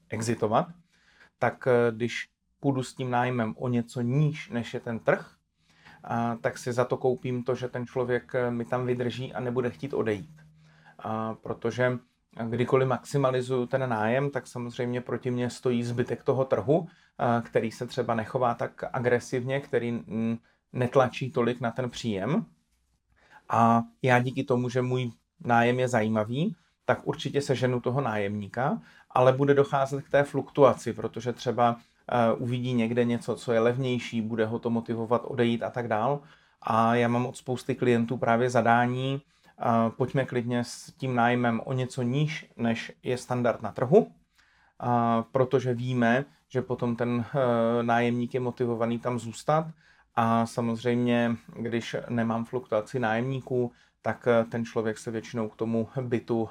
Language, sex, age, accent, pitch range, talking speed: Czech, male, 30-49, native, 115-130 Hz, 145 wpm